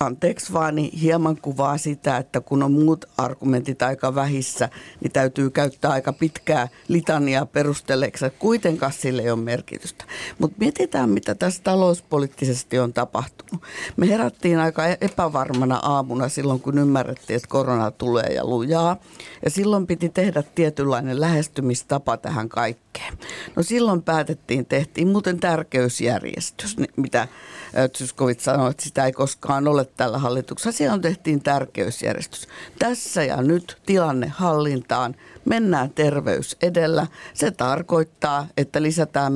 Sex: female